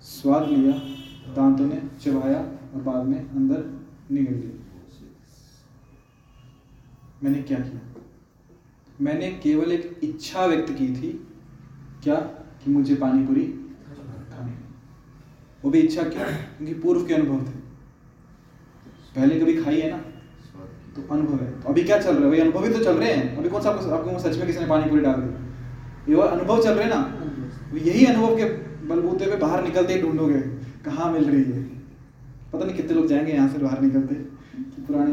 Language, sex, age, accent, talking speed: Hindi, male, 20-39, native, 150 wpm